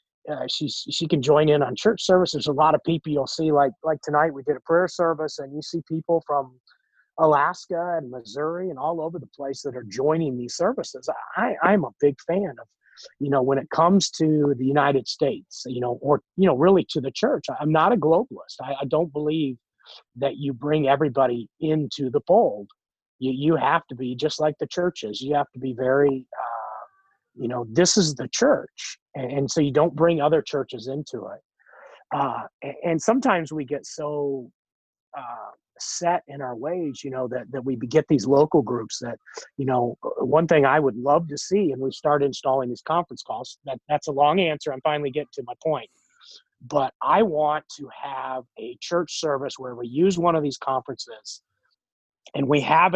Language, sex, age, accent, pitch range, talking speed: English, male, 30-49, American, 135-165 Hz, 200 wpm